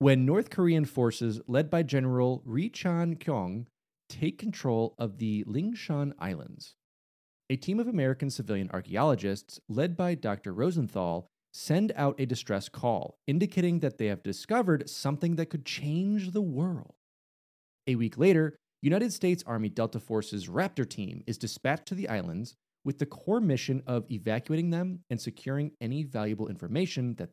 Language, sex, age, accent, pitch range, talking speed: English, male, 30-49, American, 115-170 Hz, 150 wpm